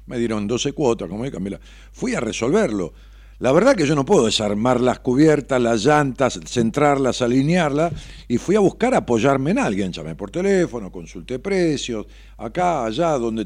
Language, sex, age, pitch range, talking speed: Spanish, male, 50-69, 95-155 Hz, 165 wpm